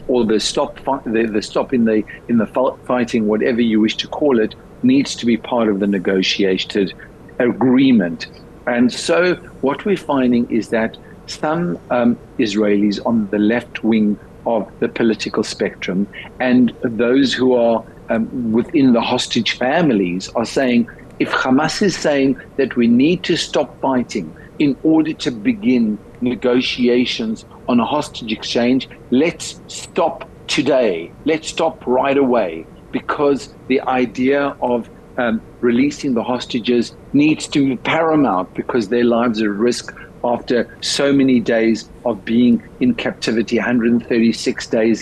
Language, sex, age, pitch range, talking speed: English, male, 50-69, 115-150 Hz, 145 wpm